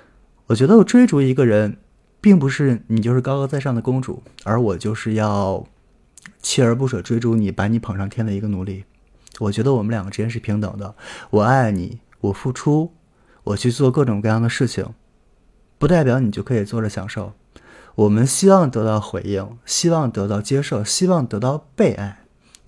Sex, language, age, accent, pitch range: male, Chinese, 20-39, native, 105-135 Hz